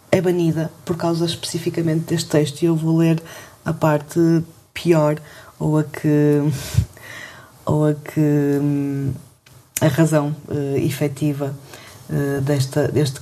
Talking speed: 110 wpm